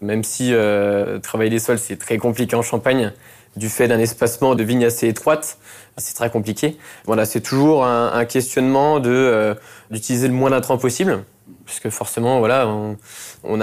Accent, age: French, 20-39